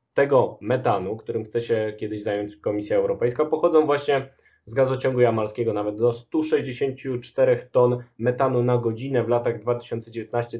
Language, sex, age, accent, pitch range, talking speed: Polish, male, 20-39, native, 120-135 Hz, 135 wpm